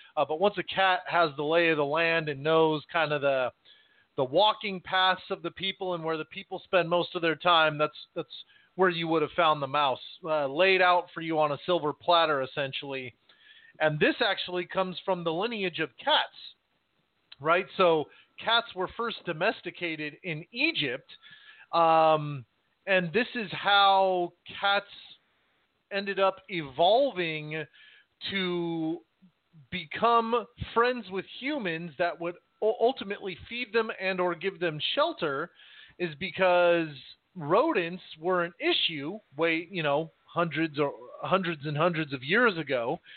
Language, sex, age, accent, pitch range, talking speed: English, male, 40-59, American, 155-195 Hz, 150 wpm